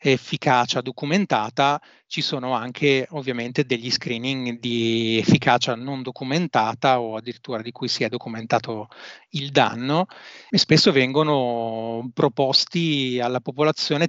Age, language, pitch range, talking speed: 30-49, Italian, 120-145 Hz, 115 wpm